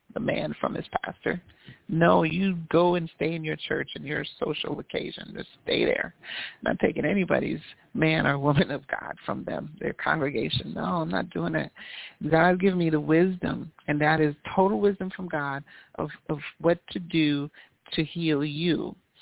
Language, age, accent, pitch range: English, 40-59, American, 150-170 Hz